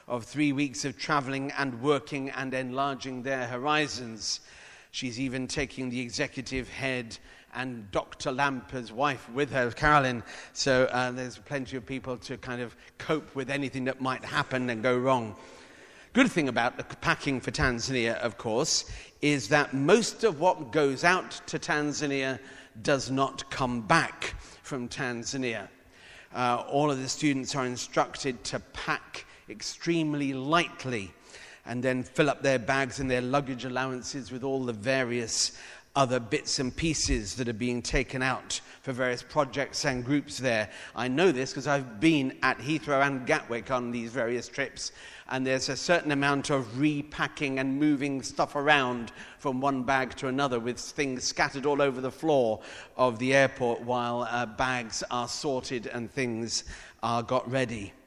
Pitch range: 125-140 Hz